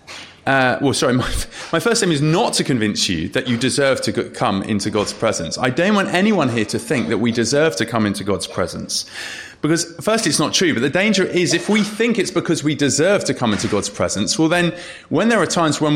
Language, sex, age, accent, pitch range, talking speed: English, male, 30-49, British, 110-175 Hz, 235 wpm